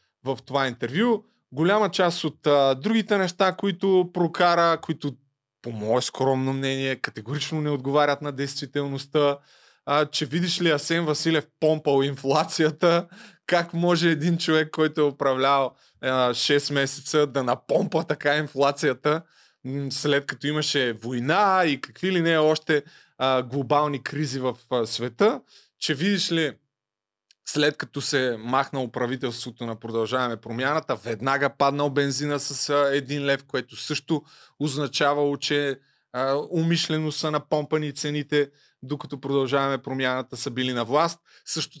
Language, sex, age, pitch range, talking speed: Bulgarian, male, 20-39, 135-165 Hz, 135 wpm